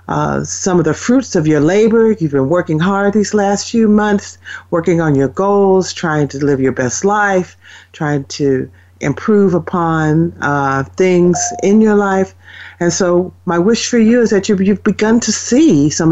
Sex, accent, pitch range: female, American, 130-210 Hz